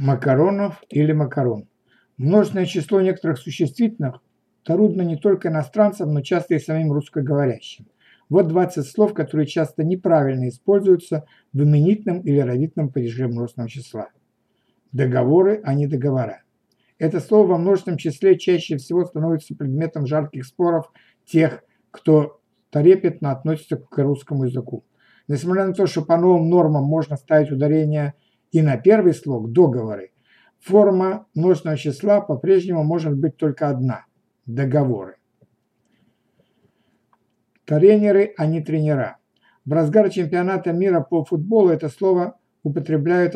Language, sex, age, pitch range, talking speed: Bulgarian, male, 60-79, 145-180 Hz, 125 wpm